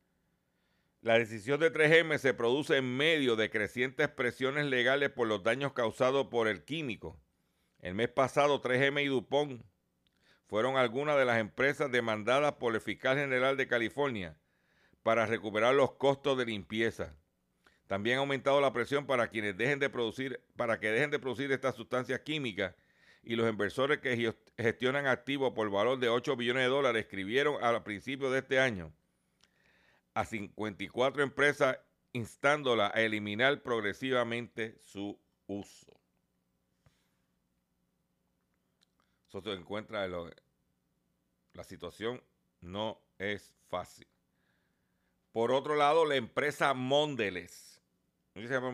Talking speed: 130 wpm